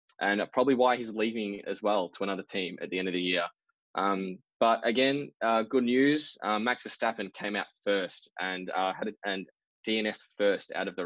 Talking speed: 205 wpm